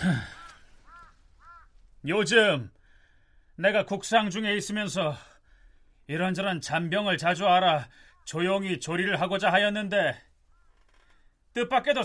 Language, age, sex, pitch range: Korean, 40-59, male, 195-270 Hz